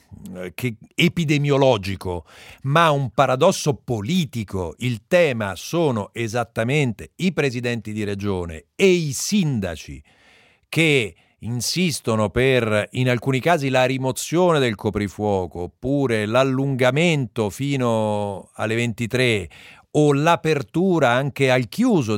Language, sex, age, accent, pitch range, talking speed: Italian, male, 50-69, native, 105-145 Hz, 95 wpm